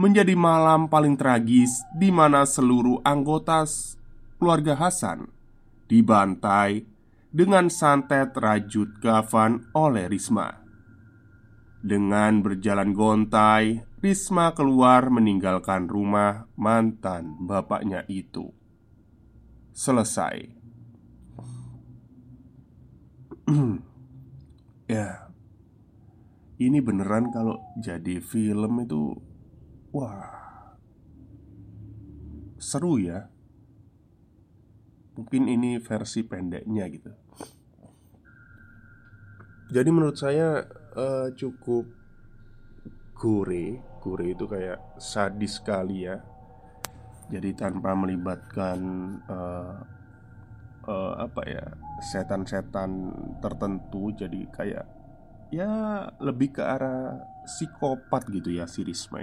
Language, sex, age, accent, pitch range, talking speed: Indonesian, male, 20-39, native, 100-125 Hz, 75 wpm